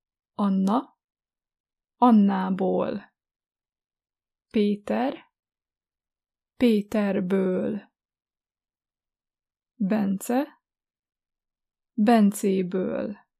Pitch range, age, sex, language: 180-235 Hz, 20-39, female, Hungarian